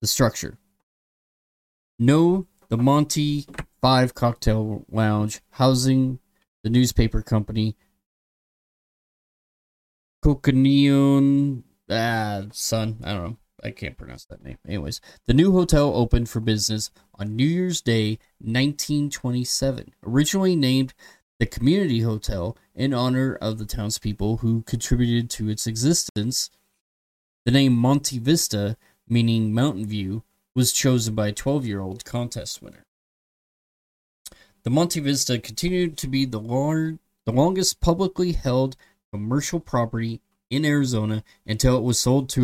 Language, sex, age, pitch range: English, male, 20-39, 110-140 Hz